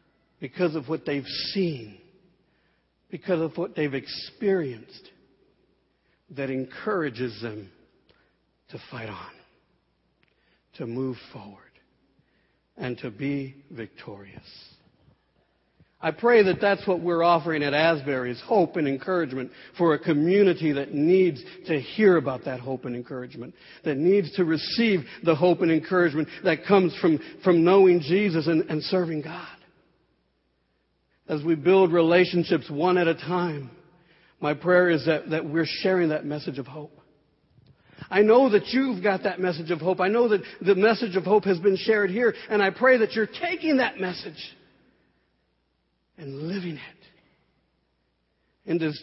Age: 60-79